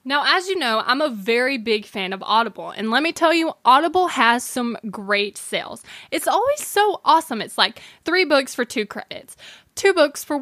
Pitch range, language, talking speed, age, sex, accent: 225-320 Hz, English, 200 wpm, 20-39, female, American